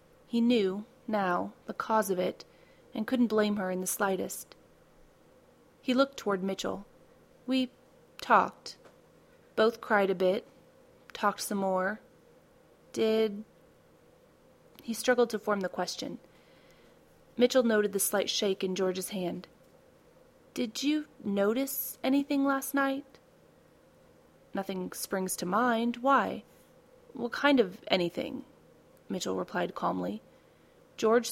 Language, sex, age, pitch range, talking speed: English, female, 30-49, 195-240 Hz, 115 wpm